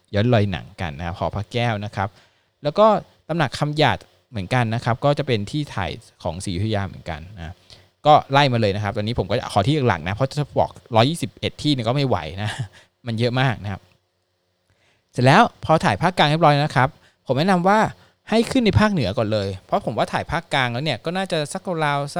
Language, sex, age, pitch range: Thai, male, 20-39, 100-145 Hz